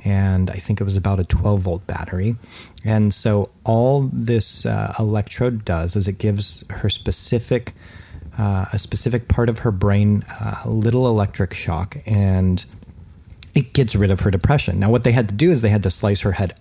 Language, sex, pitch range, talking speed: English, male, 95-115 Hz, 195 wpm